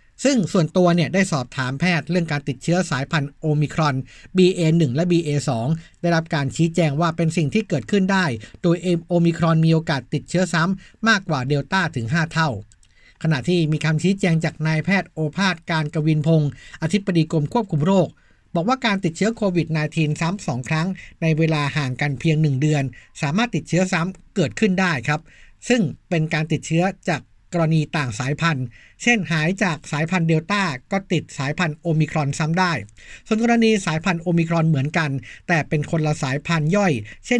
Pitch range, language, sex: 150-185 Hz, Thai, male